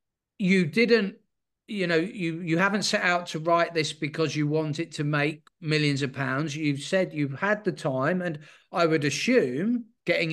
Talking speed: 185 wpm